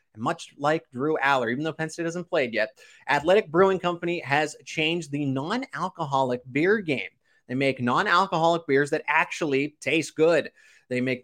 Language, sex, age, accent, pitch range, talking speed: English, male, 20-39, American, 130-170 Hz, 160 wpm